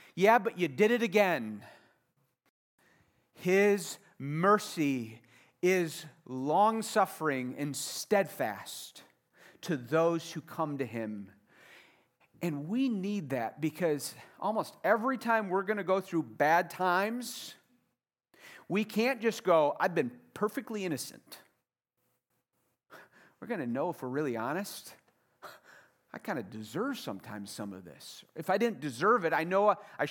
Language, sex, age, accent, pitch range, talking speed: English, male, 40-59, American, 135-200 Hz, 130 wpm